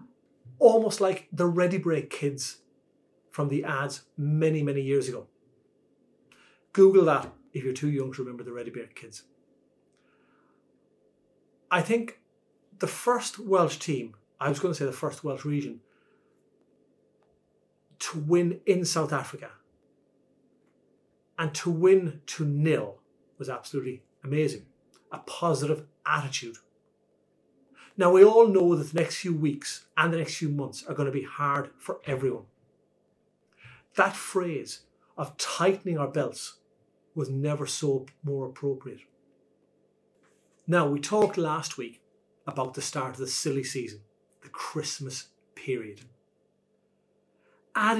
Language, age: English, 30-49